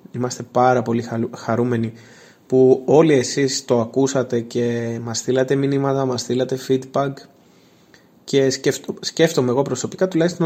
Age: 20-39